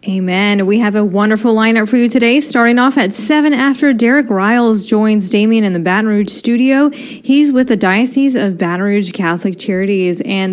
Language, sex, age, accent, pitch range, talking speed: English, female, 20-39, American, 180-245 Hz, 190 wpm